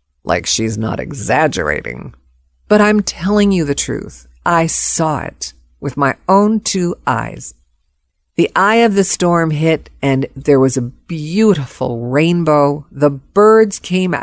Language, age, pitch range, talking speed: English, 50-69, 140-210 Hz, 140 wpm